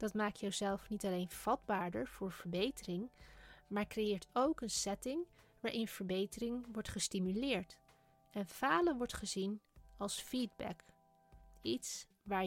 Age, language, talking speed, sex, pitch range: 20-39, Dutch, 120 wpm, female, 185-240 Hz